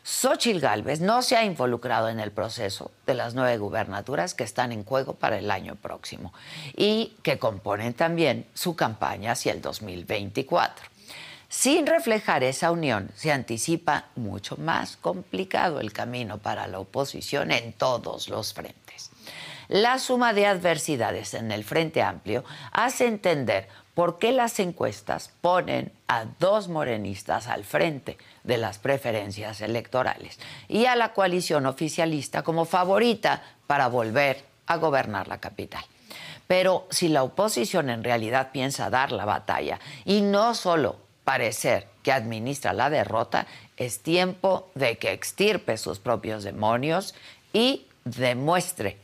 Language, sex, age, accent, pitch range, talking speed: Spanish, female, 50-69, Mexican, 110-175 Hz, 140 wpm